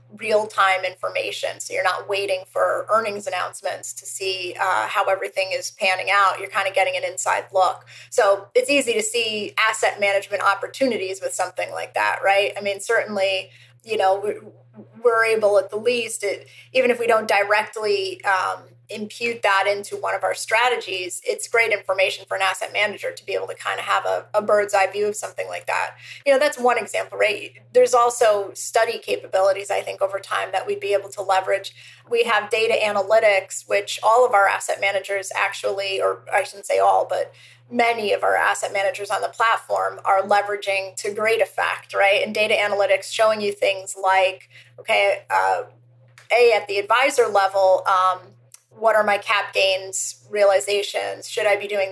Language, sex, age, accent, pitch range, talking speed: English, female, 20-39, American, 195-225 Hz, 185 wpm